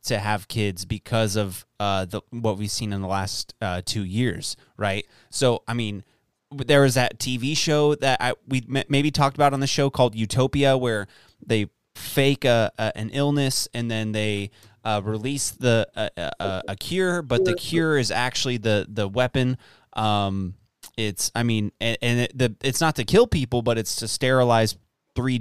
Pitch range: 105-130 Hz